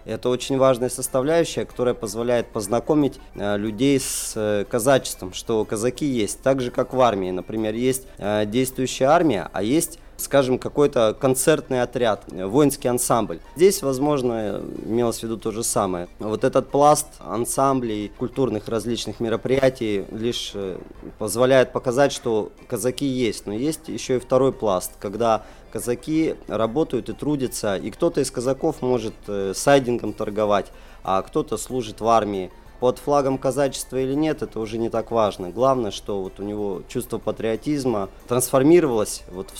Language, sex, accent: Russian, male, native